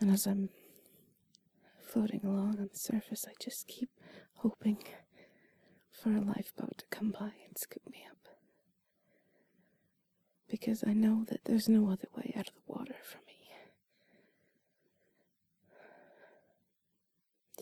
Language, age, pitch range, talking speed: English, 20-39, 200-235 Hz, 125 wpm